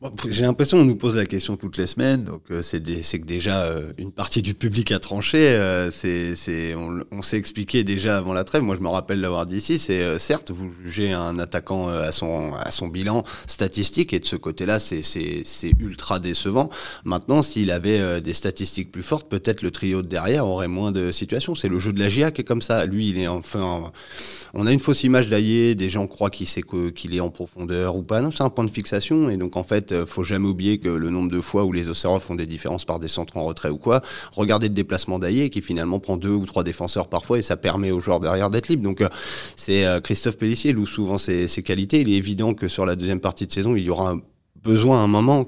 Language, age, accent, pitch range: French, 30-49, French, 90-110 Hz